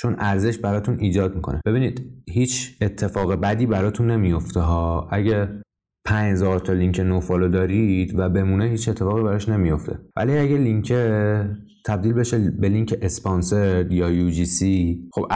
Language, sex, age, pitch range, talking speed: Persian, male, 20-39, 90-115 Hz, 145 wpm